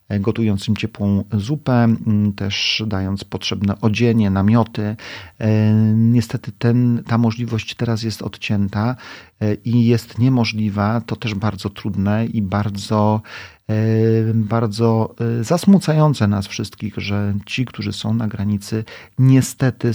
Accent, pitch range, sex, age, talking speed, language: native, 100-115 Hz, male, 40-59, 105 wpm, Polish